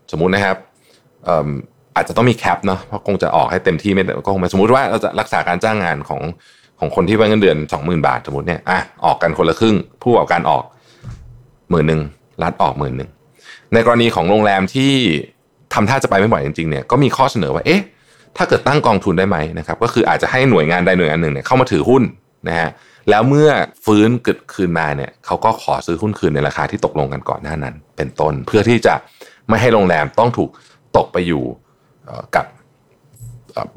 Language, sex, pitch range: Thai, male, 75-110 Hz